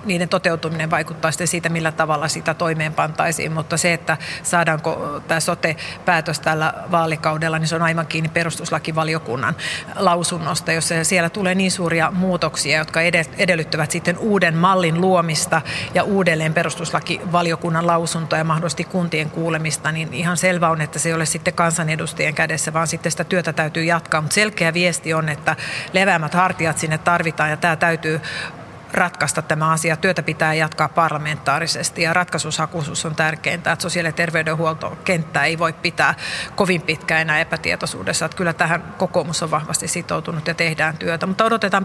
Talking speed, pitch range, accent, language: 155 wpm, 160-175 Hz, native, Finnish